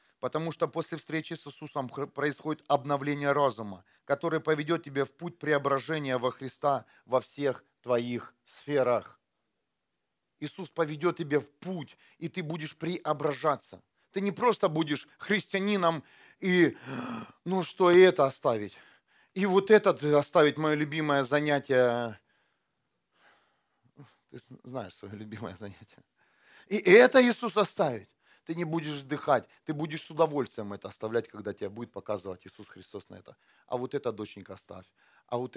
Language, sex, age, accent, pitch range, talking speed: Russian, male, 40-59, native, 115-160 Hz, 140 wpm